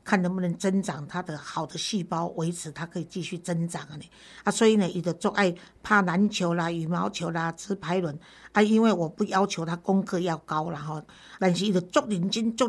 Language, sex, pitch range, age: Chinese, female, 170-200 Hz, 50-69